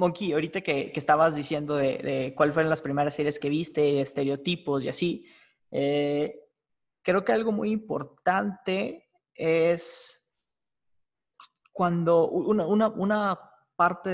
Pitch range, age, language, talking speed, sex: 145-175 Hz, 20-39, Spanish, 125 wpm, male